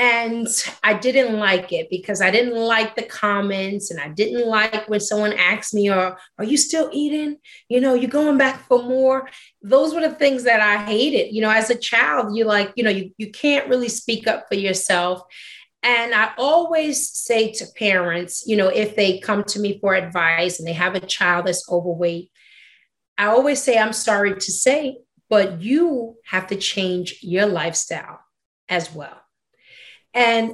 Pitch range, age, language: 200-255 Hz, 30-49, English